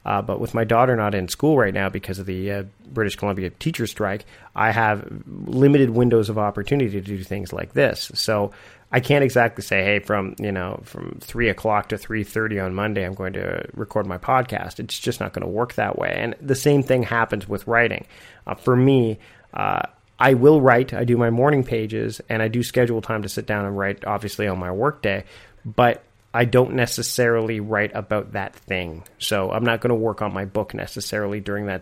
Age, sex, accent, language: 30-49, male, American, English